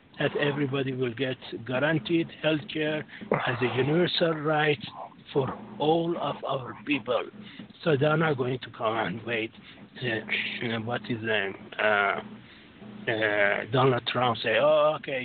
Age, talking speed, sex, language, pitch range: 60-79, 145 wpm, male, English, 120-150 Hz